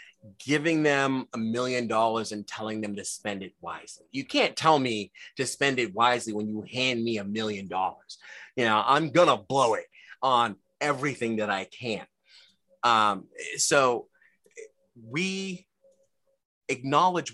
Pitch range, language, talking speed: 110-160 Hz, English, 150 wpm